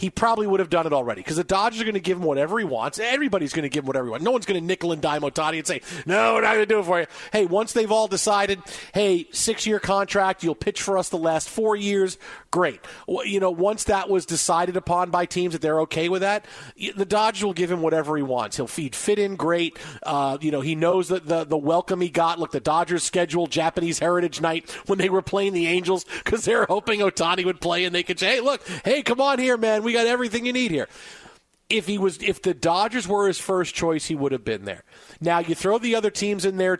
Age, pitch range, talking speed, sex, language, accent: 40-59, 160-210 Hz, 260 wpm, male, English, American